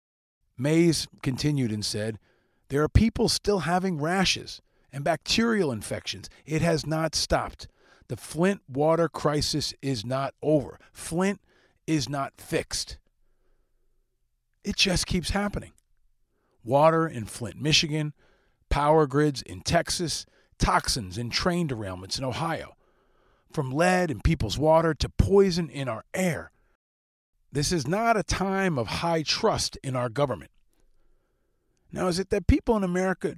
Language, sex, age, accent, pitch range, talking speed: English, male, 40-59, American, 125-175 Hz, 135 wpm